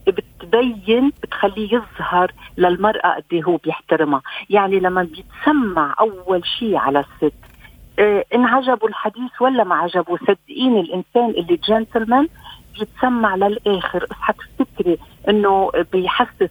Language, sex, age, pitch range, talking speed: Arabic, female, 50-69, 175-240 Hz, 115 wpm